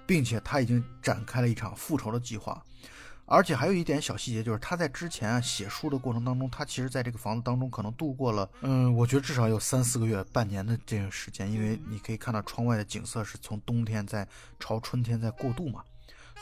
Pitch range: 110-130 Hz